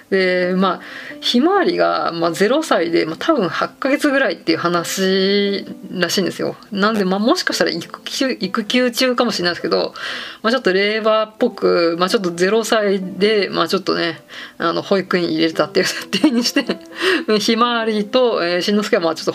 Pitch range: 170-240 Hz